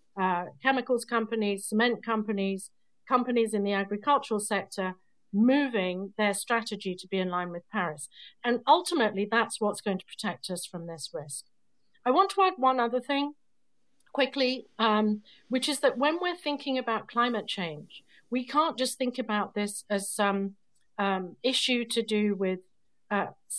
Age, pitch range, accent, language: 50-69, 200-255 Hz, British, English